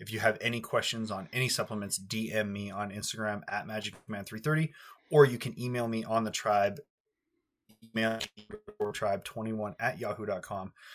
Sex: male